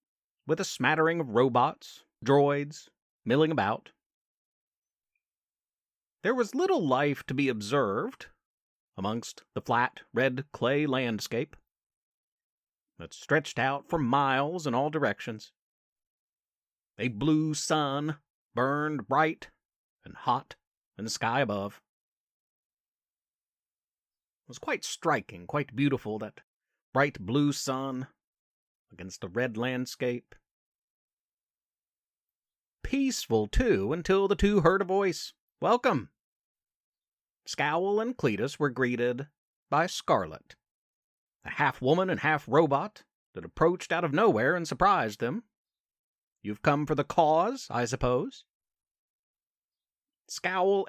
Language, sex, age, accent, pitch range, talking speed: English, male, 40-59, American, 125-175 Hz, 105 wpm